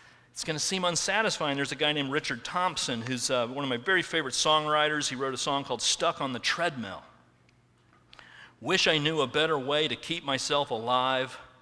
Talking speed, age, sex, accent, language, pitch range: 195 wpm, 40-59, male, American, English, 125-155 Hz